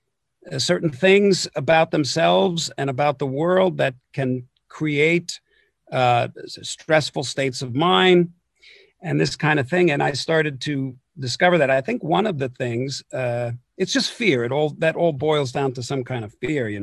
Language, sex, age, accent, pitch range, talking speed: English, male, 50-69, American, 130-175 Hz, 175 wpm